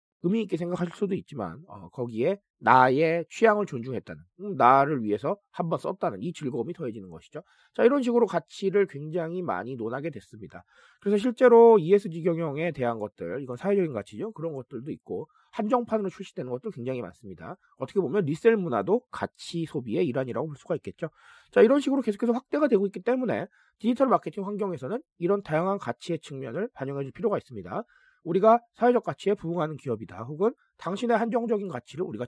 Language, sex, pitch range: Korean, male, 135-220 Hz